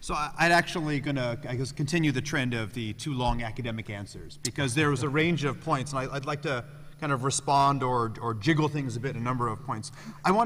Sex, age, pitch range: male, 30-49, 125-150 Hz